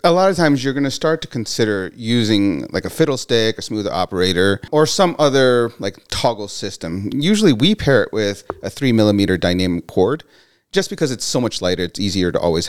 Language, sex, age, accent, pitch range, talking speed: English, male, 30-49, American, 90-130 Hz, 205 wpm